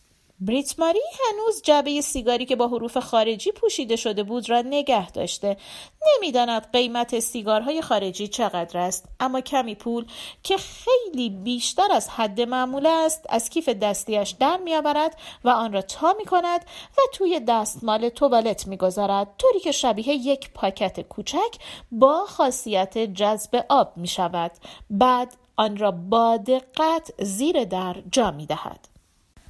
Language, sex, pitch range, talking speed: Persian, female, 200-280 Hz, 130 wpm